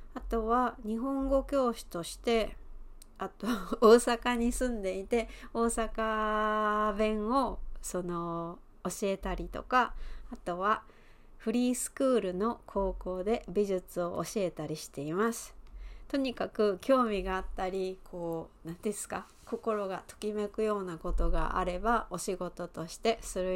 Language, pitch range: Japanese, 180-230 Hz